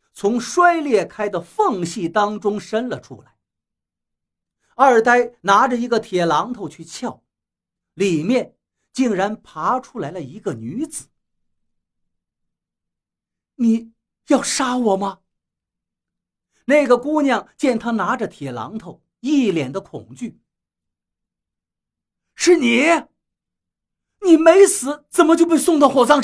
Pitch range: 205-275 Hz